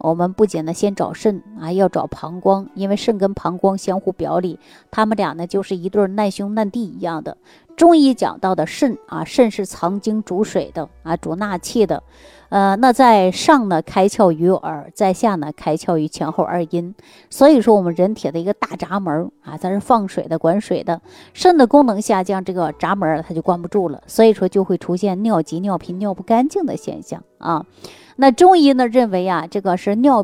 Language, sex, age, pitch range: Chinese, female, 30-49, 180-245 Hz